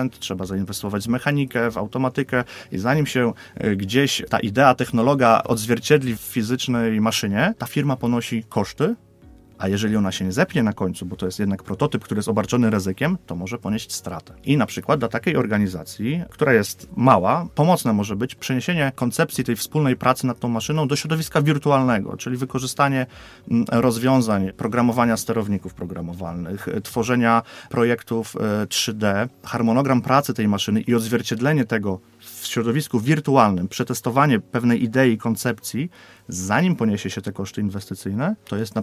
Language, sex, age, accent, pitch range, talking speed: Polish, male, 30-49, native, 100-130 Hz, 150 wpm